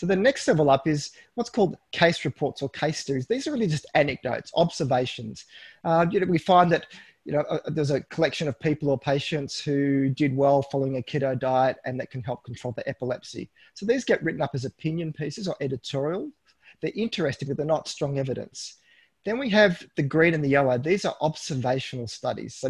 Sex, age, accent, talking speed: male, 30-49, Australian, 200 wpm